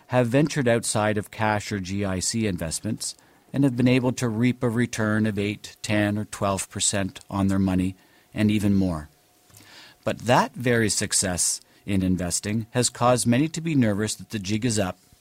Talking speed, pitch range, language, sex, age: 180 wpm, 100-125 Hz, English, male, 50-69